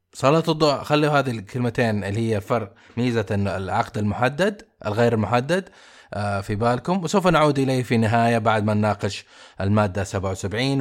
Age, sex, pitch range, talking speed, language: 20-39, male, 105-130 Hz, 140 wpm, Arabic